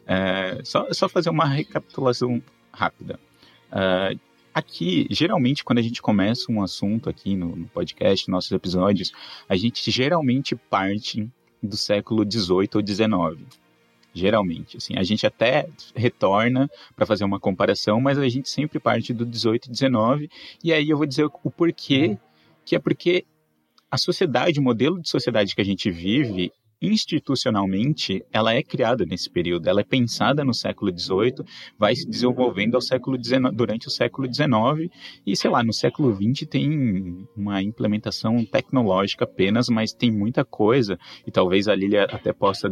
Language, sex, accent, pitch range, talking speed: Portuguese, male, Brazilian, 105-140 Hz, 155 wpm